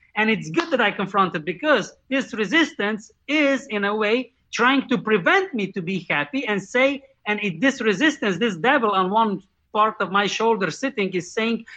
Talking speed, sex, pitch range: 185 wpm, male, 185-255 Hz